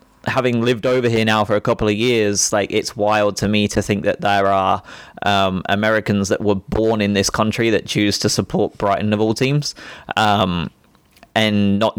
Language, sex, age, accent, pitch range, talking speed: English, male, 20-39, British, 100-120 Hz, 195 wpm